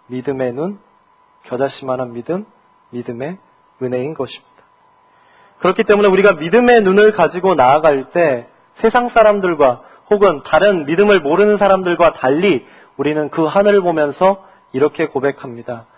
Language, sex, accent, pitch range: Korean, male, native, 135-190 Hz